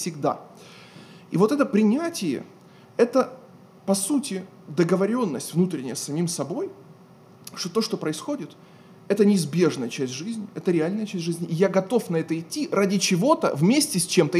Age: 20-39